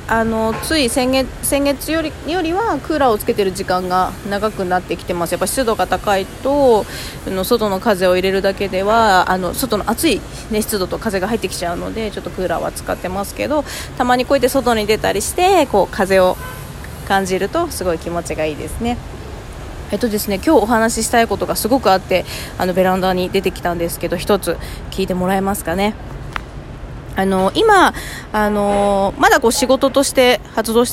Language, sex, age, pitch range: Japanese, female, 20-39, 185-255 Hz